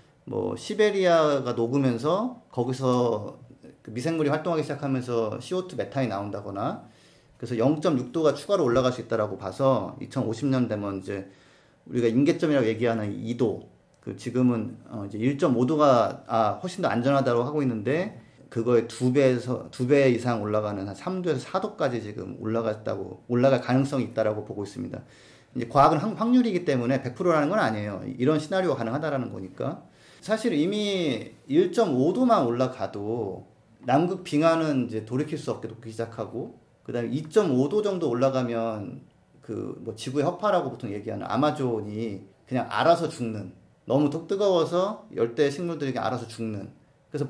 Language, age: Korean, 40-59